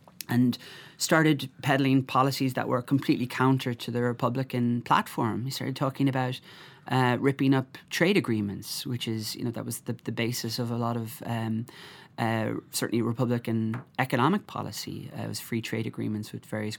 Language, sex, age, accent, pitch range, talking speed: English, male, 20-39, Irish, 115-130 Hz, 170 wpm